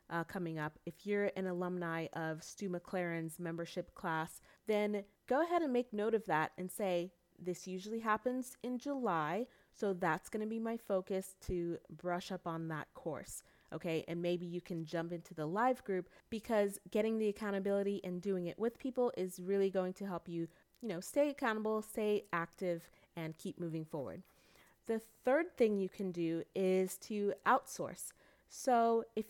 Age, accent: 30-49, American